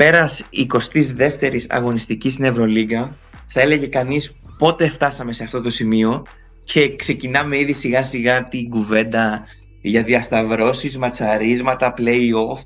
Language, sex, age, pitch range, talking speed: Greek, male, 20-39, 115-145 Hz, 125 wpm